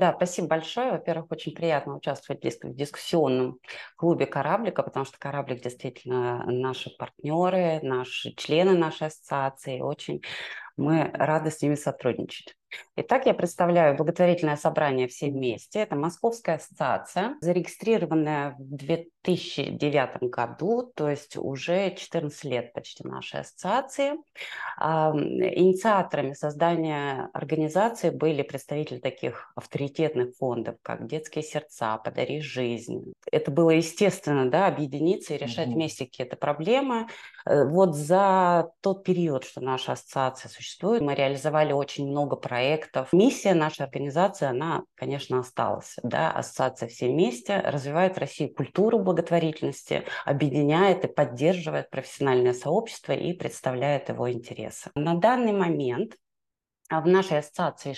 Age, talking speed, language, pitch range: 20-39, 120 wpm, Russian, 135-175 Hz